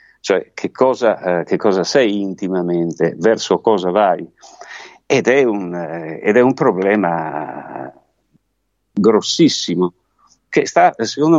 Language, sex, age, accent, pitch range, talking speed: Italian, male, 50-69, native, 95-125 Hz, 120 wpm